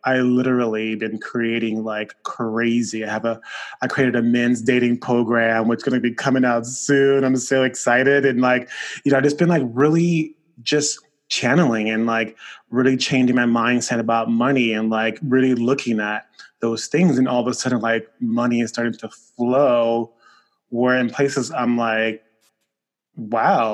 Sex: male